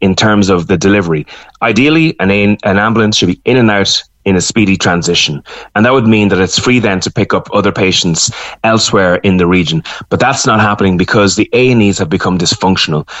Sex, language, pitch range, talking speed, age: male, English, 95-110 Hz, 220 wpm, 30-49